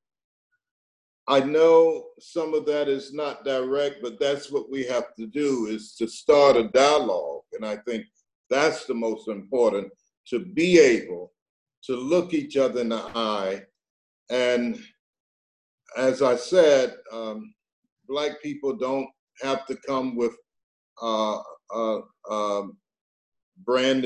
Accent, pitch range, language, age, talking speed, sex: American, 115-165 Hz, English, 50-69, 130 wpm, male